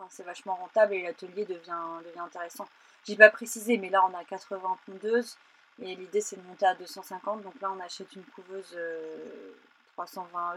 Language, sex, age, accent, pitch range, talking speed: French, female, 30-49, French, 180-225 Hz, 180 wpm